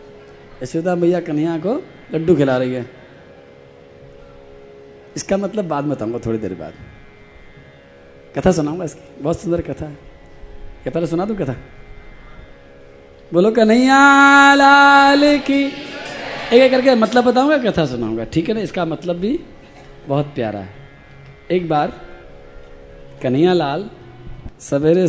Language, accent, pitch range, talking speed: Hindi, native, 120-180 Hz, 125 wpm